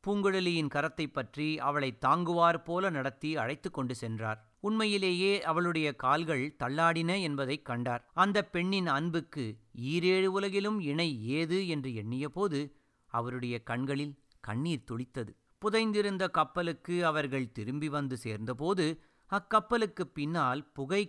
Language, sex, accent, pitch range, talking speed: Tamil, male, native, 140-195 Hz, 110 wpm